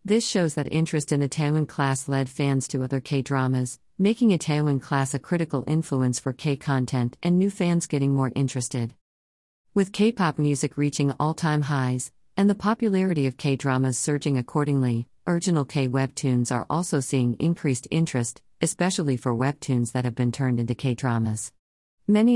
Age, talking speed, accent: 50-69, 155 wpm, American